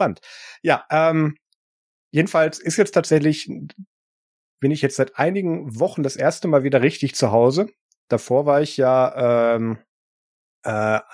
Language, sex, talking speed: German, male, 135 wpm